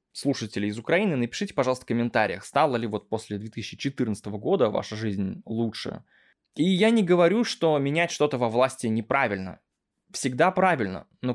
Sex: male